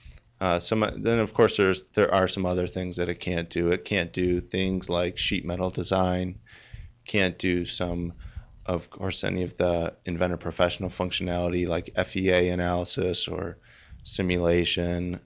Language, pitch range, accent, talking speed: English, 85-95 Hz, American, 155 wpm